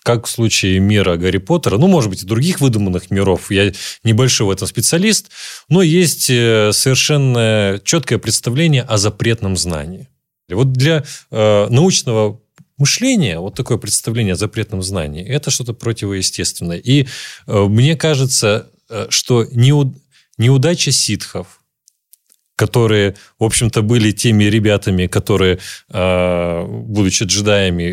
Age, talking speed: 30-49, 115 wpm